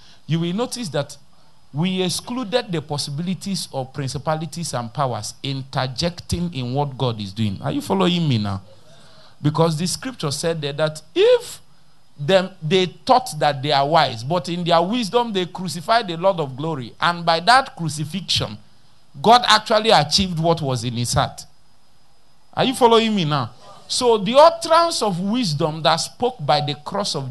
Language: English